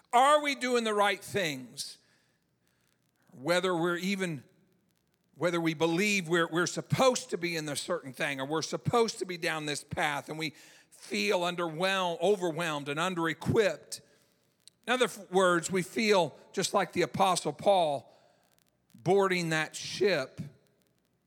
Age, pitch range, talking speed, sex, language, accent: 50-69, 145-195 Hz, 140 wpm, male, English, American